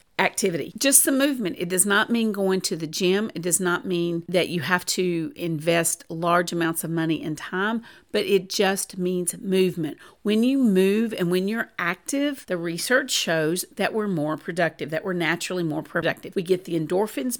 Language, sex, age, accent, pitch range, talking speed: English, female, 50-69, American, 170-220 Hz, 190 wpm